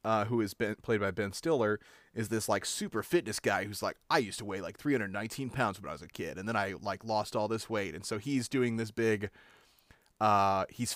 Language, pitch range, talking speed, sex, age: English, 100-120 Hz, 240 wpm, male, 30-49